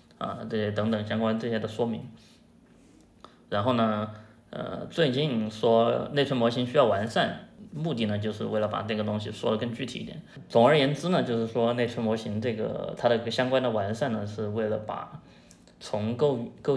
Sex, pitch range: male, 105-120 Hz